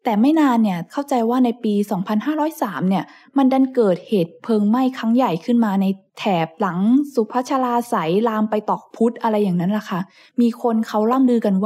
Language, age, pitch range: Thai, 20-39, 200-250 Hz